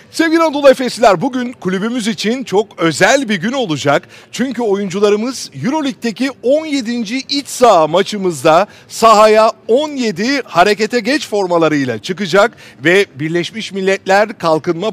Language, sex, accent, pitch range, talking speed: Turkish, male, native, 160-225 Hz, 115 wpm